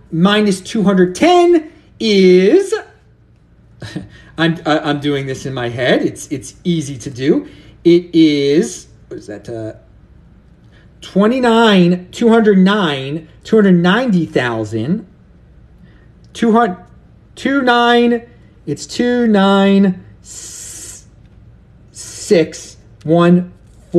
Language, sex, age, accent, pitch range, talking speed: English, male, 30-49, American, 140-225 Hz, 70 wpm